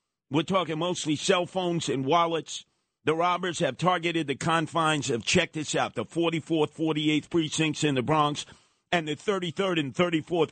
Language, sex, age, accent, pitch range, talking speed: English, male, 50-69, American, 140-170 Hz, 165 wpm